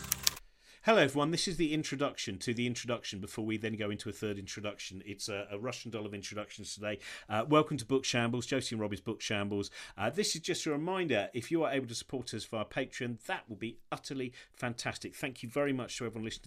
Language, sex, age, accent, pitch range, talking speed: English, male, 40-59, British, 100-125 Hz, 225 wpm